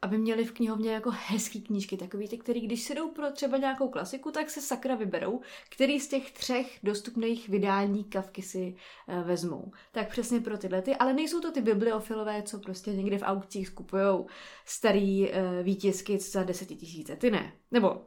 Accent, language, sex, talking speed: native, Czech, female, 185 wpm